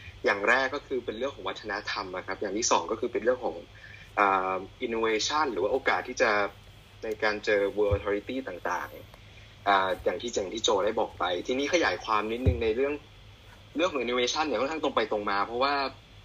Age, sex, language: 20-39, male, Thai